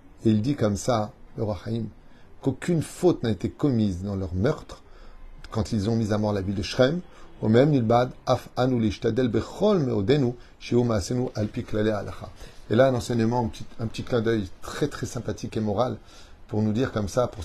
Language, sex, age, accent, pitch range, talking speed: French, male, 30-49, French, 100-120 Hz, 160 wpm